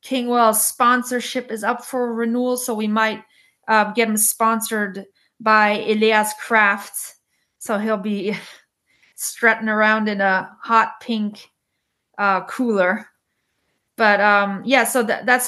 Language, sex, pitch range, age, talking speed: English, female, 195-225 Hz, 30-49, 130 wpm